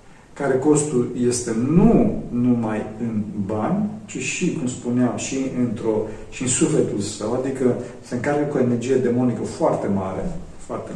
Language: Romanian